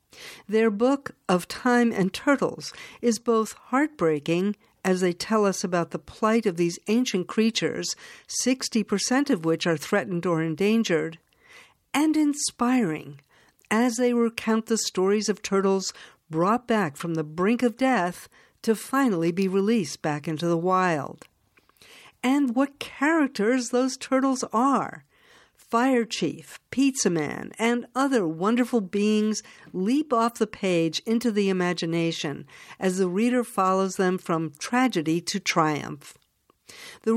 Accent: American